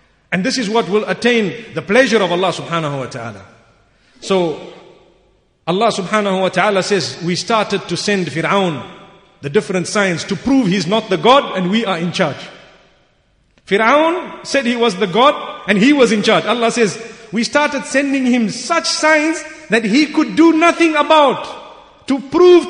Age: 50-69